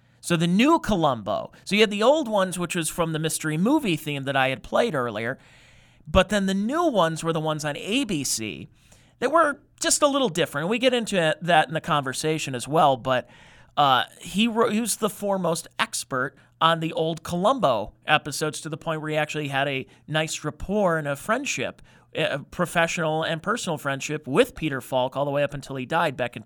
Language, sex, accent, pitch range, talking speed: English, male, American, 140-195 Hz, 205 wpm